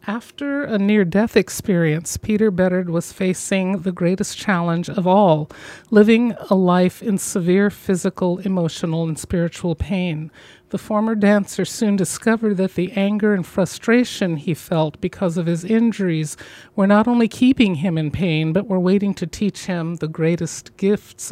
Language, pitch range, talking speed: English, 175-215 Hz, 155 wpm